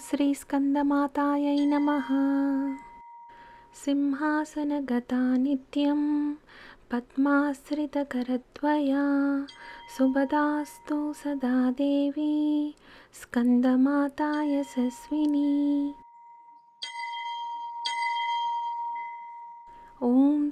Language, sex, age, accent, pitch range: Telugu, female, 20-39, native, 280-300 Hz